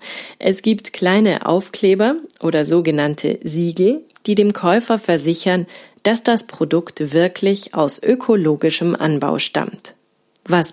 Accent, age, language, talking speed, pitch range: German, 30-49, German, 110 wpm, 155-210 Hz